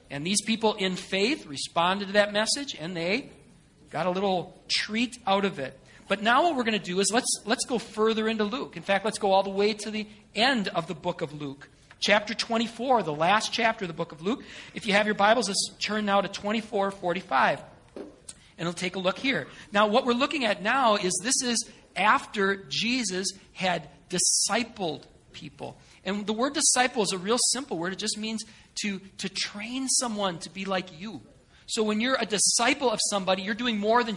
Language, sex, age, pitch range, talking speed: English, male, 40-59, 180-230 Hz, 205 wpm